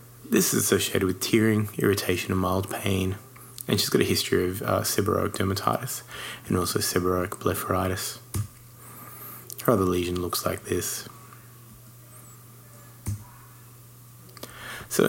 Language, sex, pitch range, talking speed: English, male, 95-120 Hz, 115 wpm